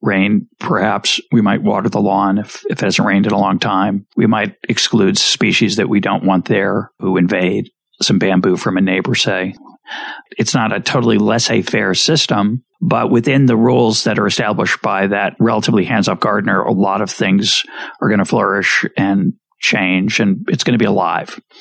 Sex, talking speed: male, 190 wpm